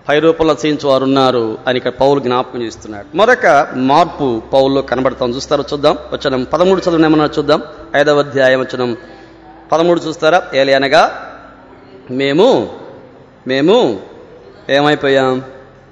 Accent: native